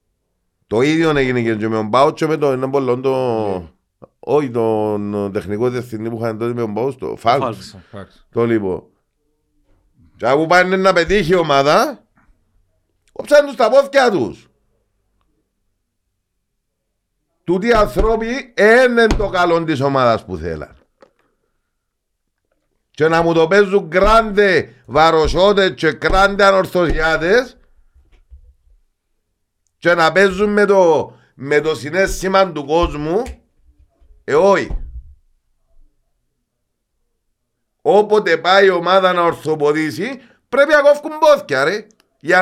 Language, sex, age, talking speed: Greek, male, 50-69, 110 wpm